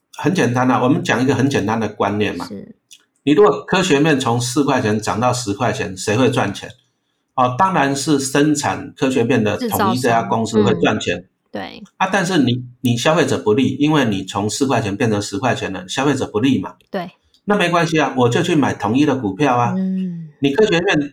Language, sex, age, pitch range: Chinese, male, 50-69, 110-145 Hz